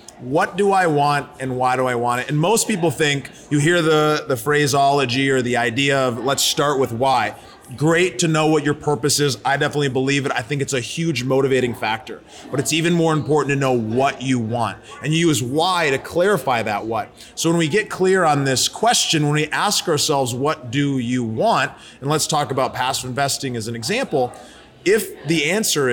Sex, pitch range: male, 130-155 Hz